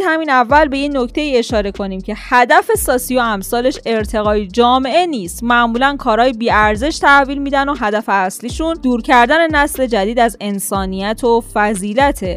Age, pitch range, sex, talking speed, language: 10-29, 210-275 Hz, female, 155 wpm, Persian